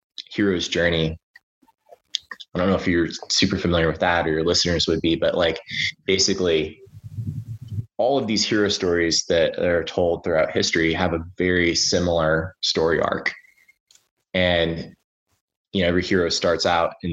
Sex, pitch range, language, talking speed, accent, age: male, 80-95 Hz, English, 150 wpm, American, 20-39